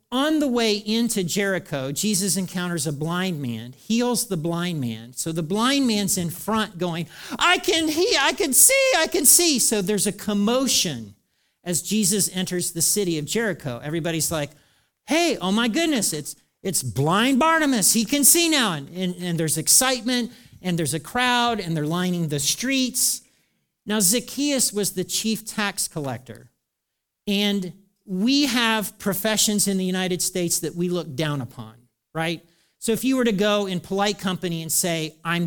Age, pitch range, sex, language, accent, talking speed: 50-69, 165-230 Hz, male, English, American, 175 wpm